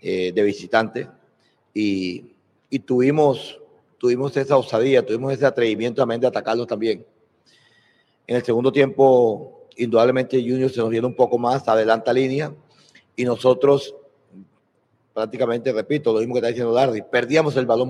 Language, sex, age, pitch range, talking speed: Spanish, male, 30-49, 120-140 Hz, 140 wpm